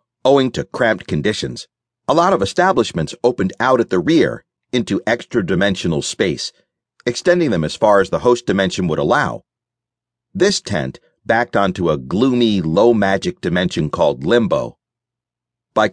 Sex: male